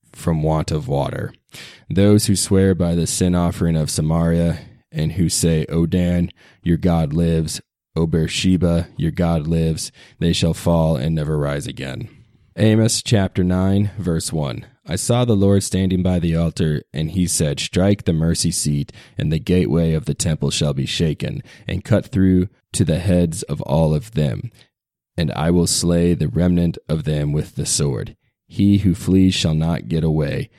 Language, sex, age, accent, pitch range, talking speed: English, male, 20-39, American, 80-95 Hz, 175 wpm